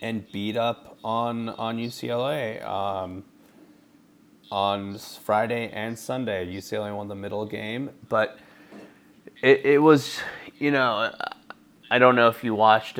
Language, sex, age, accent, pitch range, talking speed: English, male, 30-49, American, 95-120 Hz, 130 wpm